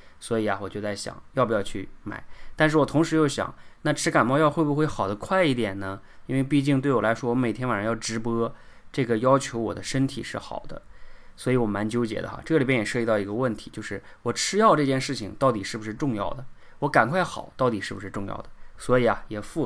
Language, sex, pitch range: Chinese, male, 105-135 Hz